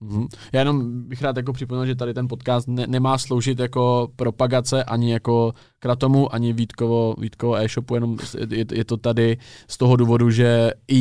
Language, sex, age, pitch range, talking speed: Czech, male, 20-39, 105-125 Hz, 180 wpm